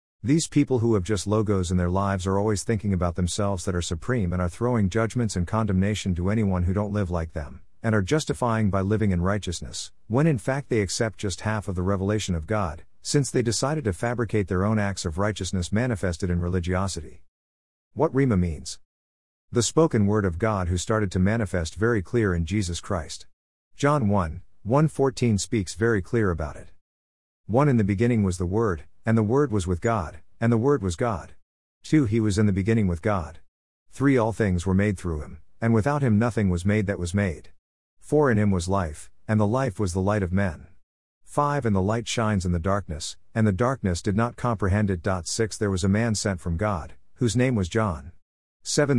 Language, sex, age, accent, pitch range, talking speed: English, male, 50-69, American, 90-115 Hz, 210 wpm